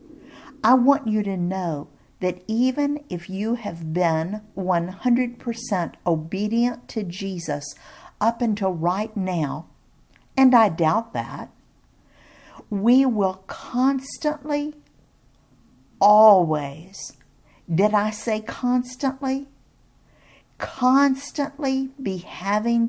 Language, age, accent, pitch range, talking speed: English, 50-69, American, 165-235 Hz, 90 wpm